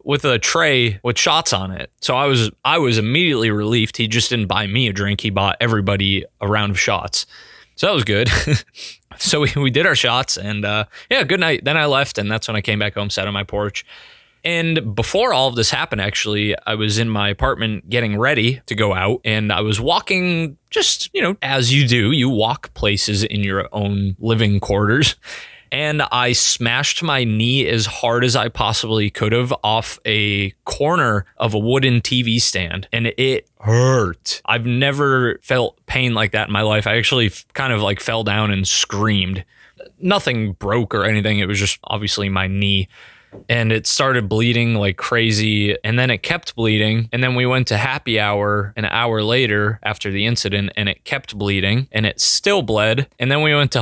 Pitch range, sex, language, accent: 105-125 Hz, male, English, American